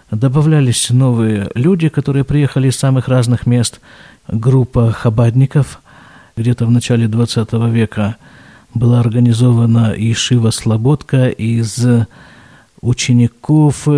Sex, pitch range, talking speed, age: male, 120-155 Hz, 95 wpm, 50-69